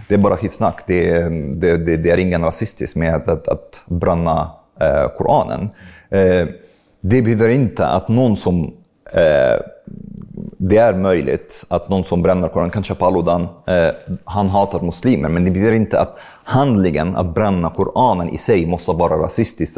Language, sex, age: Swedish, male, 30-49